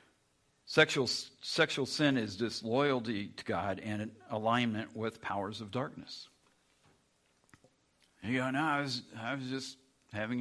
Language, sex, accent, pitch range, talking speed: English, male, American, 100-130 Hz, 125 wpm